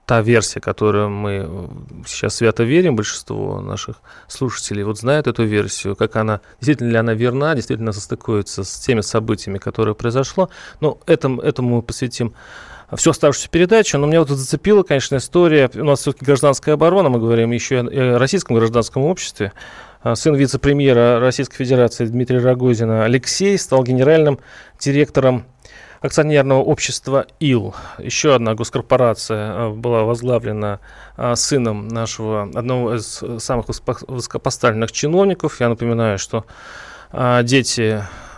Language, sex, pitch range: Russian, male, 110-135 Hz